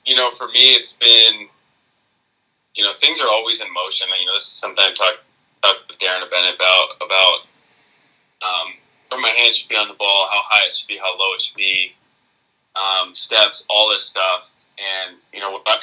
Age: 20-39